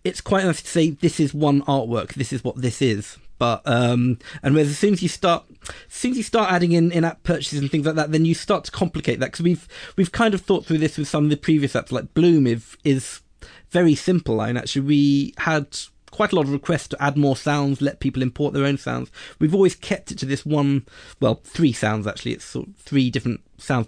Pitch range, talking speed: 125-160 Hz, 250 wpm